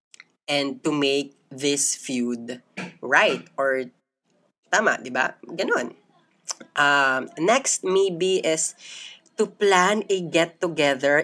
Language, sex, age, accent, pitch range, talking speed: Filipino, female, 20-39, native, 135-170 Hz, 95 wpm